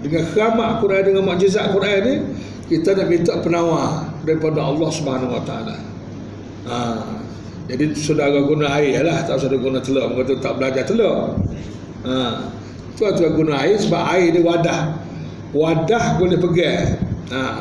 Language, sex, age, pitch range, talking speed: Malay, male, 50-69, 135-170 Hz, 145 wpm